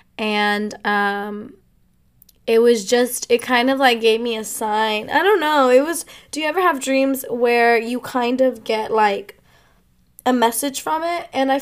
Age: 20-39